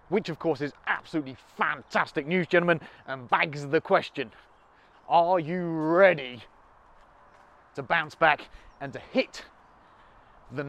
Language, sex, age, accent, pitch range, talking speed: English, male, 30-49, British, 140-180 Hz, 125 wpm